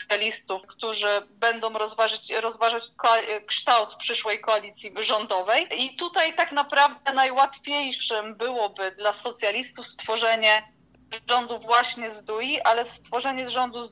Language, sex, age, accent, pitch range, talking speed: Polish, female, 20-39, native, 215-255 Hz, 110 wpm